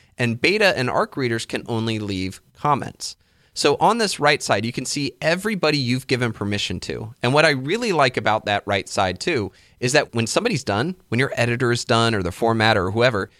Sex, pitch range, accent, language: male, 105-140 Hz, American, English